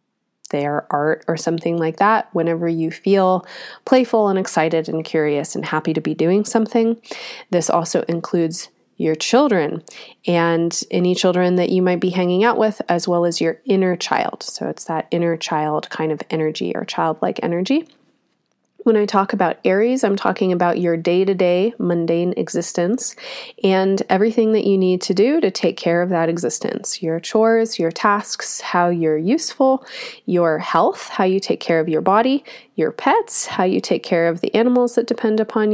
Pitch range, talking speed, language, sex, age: 165-215 Hz, 175 wpm, English, female, 30-49